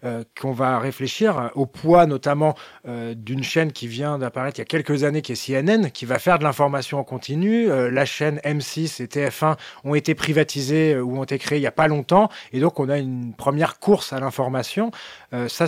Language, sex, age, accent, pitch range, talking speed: French, male, 30-49, French, 130-160 Hz, 225 wpm